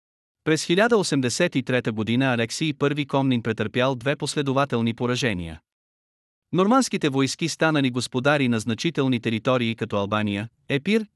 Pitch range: 120-150 Hz